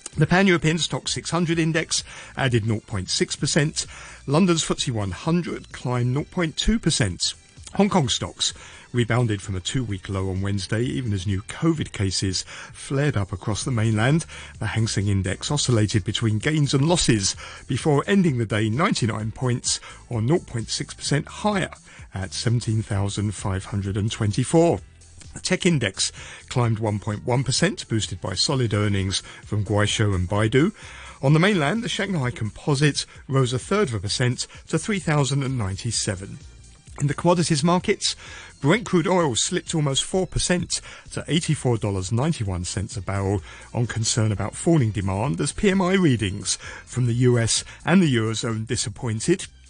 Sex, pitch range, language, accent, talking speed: male, 105-155 Hz, English, British, 130 wpm